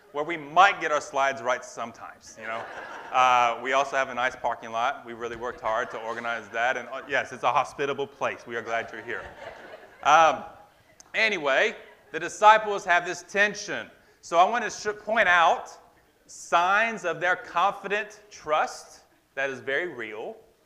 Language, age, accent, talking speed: English, 30-49, American, 170 wpm